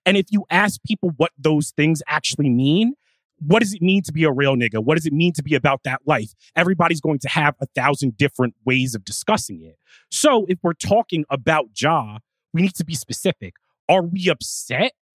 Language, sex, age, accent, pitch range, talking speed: English, male, 30-49, American, 135-180 Hz, 210 wpm